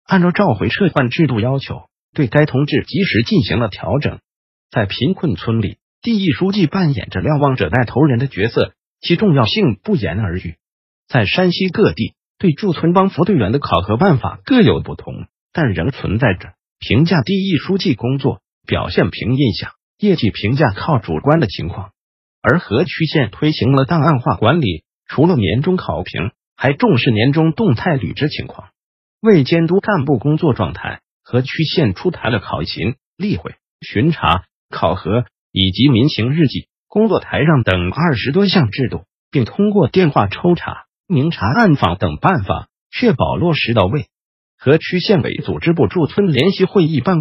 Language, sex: Chinese, male